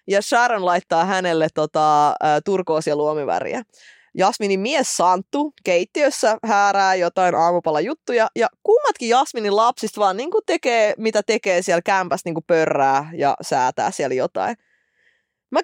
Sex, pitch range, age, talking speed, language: female, 170-255 Hz, 20-39, 125 wpm, Finnish